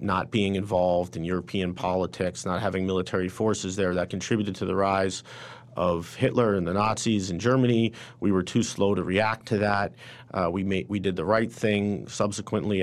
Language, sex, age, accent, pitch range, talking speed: English, male, 40-59, American, 95-105 Hz, 185 wpm